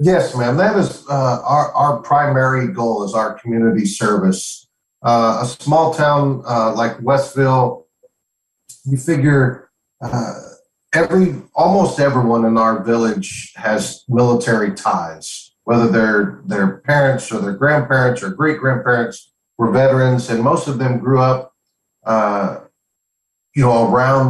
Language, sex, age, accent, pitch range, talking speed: English, male, 50-69, American, 115-140 Hz, 135 wpm